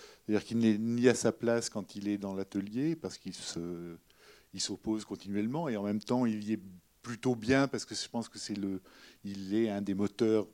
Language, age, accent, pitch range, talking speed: French, 50-69, French, 105-125 Hz, 205 wpm